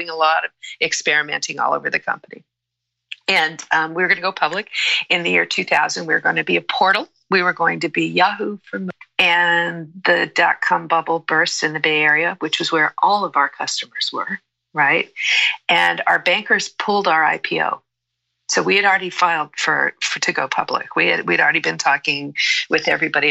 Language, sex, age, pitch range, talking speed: English, female, 50-69, 160-200 Hz, 195 wpm